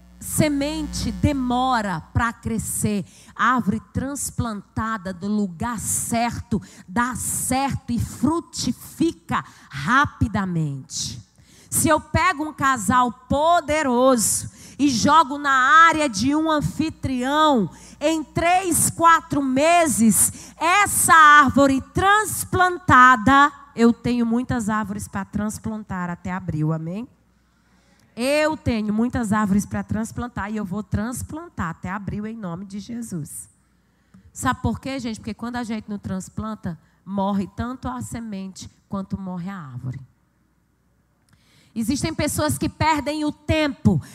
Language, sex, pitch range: Portuguese, female, 200-305 Hz